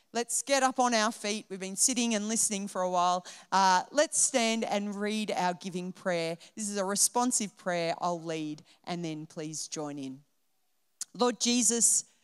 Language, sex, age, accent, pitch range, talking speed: English, female, 40-59, Australian, 170-225 Hz, 175 wpm